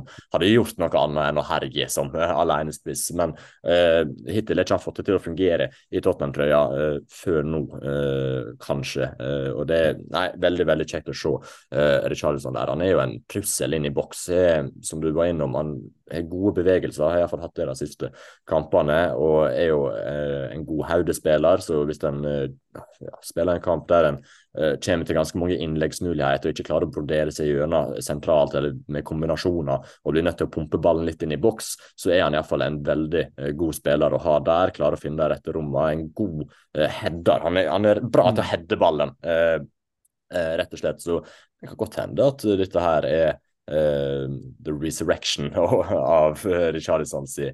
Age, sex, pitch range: 20-39, male, 70-80 Hz